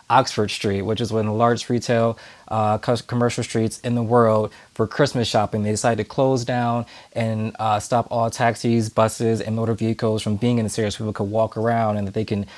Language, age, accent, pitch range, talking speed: English, 20-39, American, 110-125 Hz, 215 wpm